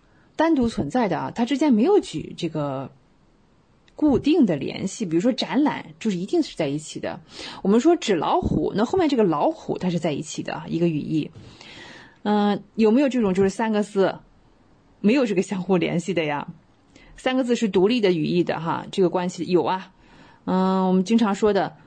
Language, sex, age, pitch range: Chinese, female, 20-39, 180-245 Hz